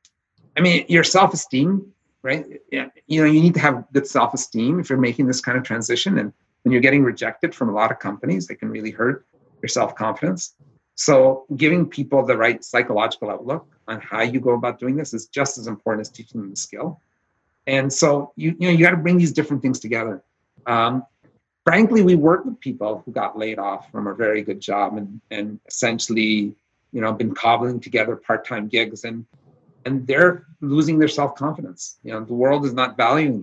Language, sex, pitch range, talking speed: English, male, 110-150 Hz, 195 wpm